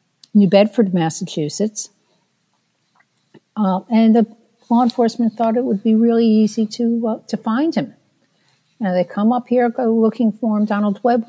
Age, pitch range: 50-69, 180-220 Hz